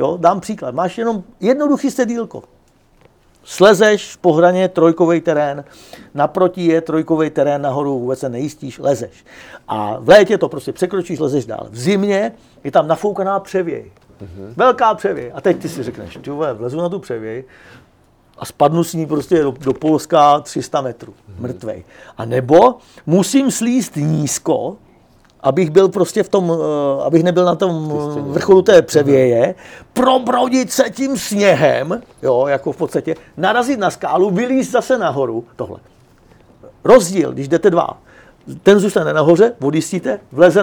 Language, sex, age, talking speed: Czech, male, 50-69, 145 wpm